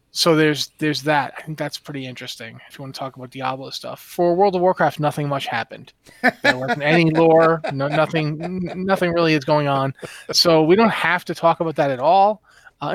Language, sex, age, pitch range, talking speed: English, male, 30-49, 145-170 Hz, 215 wpm